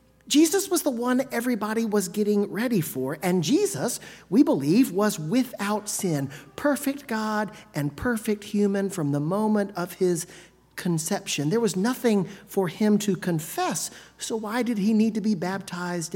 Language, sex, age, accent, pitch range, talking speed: English, male, 40-59, American, 175-240 Hz, 155 wpm